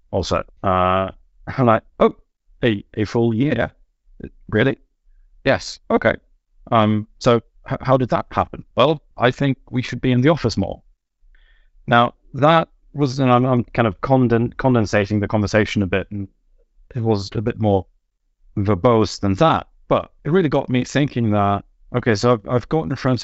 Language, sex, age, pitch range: English, male, 30-49, 105-125 Hz